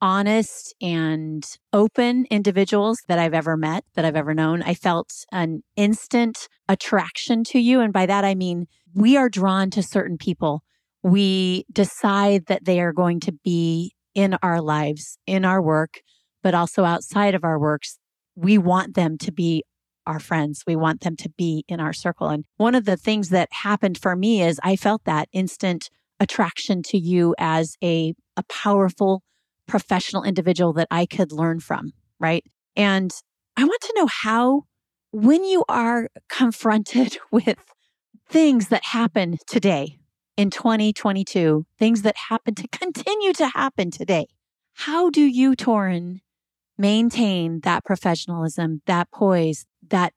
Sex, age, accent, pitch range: female, 30-49, American, 170-225 Hz